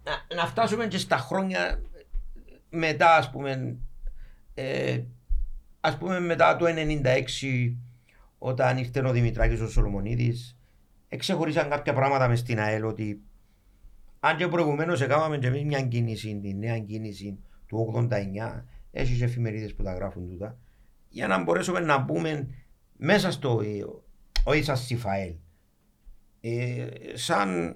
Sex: male